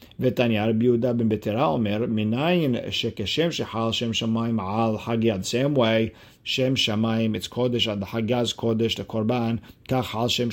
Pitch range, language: 110-125 Hz, English